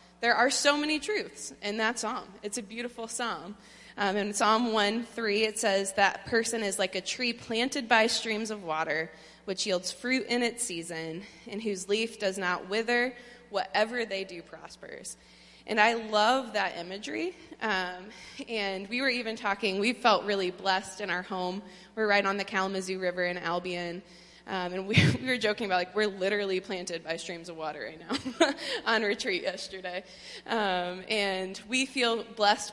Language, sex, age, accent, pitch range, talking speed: English, female, 20-39, American, 180-230 Hz, 175 wpm